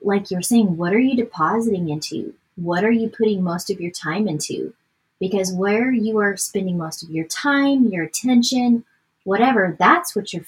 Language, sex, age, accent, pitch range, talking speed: English, female, 30-49, American, 175-225 Hz, 185 wpm